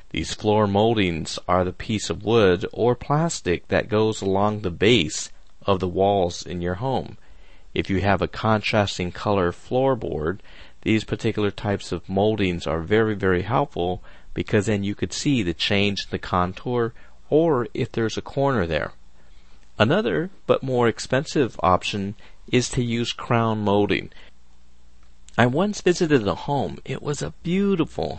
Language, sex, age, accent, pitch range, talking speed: English, male, 40-59, American, 85-110 Hz, 150 wpm